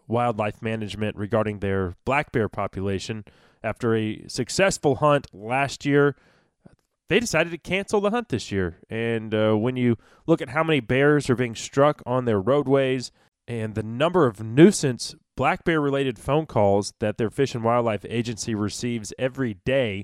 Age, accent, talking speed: 20-39, American, 165 wpm